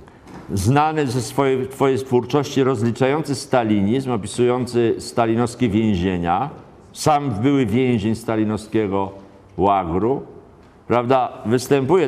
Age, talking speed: 50-69, 80 wpm